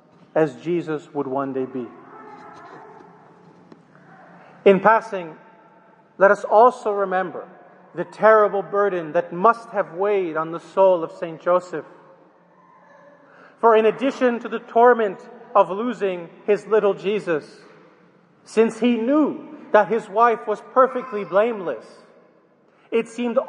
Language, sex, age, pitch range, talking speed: English, male, 40-59, 175-230 Hz, 120 wpm